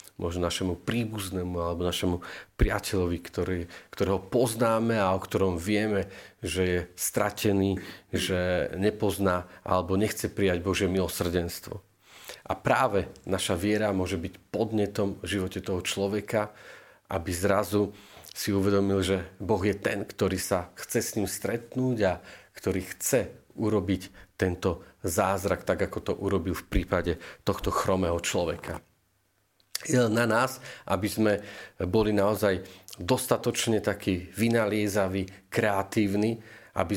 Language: Slovak